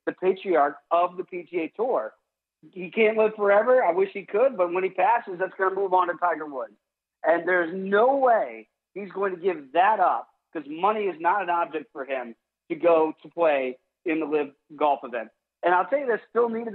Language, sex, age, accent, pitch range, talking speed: English, male, 40-59, American, 165-245 Hz, 215 wpm